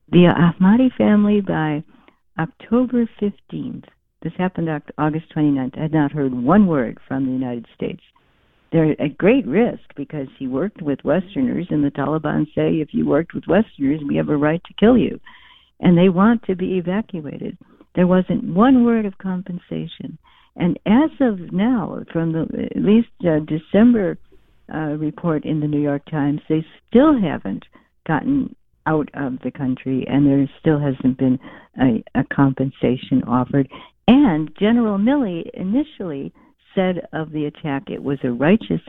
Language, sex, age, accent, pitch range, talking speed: English, female, 60-79, American, 140-210 Hz, 155 wpm